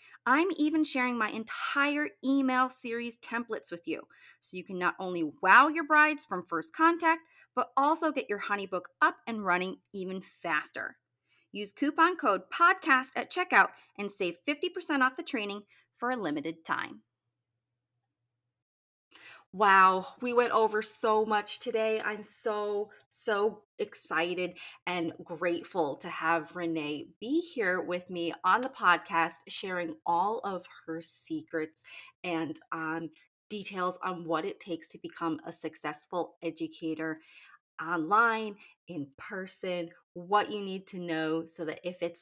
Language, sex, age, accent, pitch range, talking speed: English, female, 30-49, American, 165-220 Hz, 140 wpm